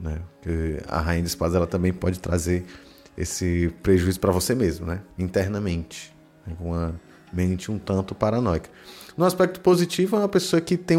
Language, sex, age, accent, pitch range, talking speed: Portuguese, male, 20-39, Brazilian, 90-120 Hz, 165 wpm